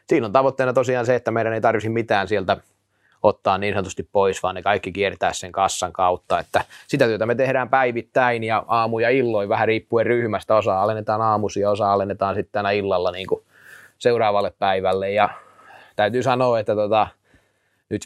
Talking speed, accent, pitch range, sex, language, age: 175 wpm, native, 100-120 Hz, male, Finnish, 20-39